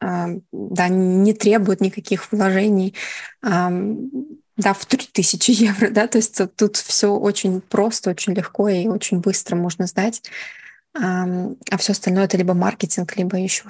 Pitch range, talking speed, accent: 190-210 Hz, 135 wpm, native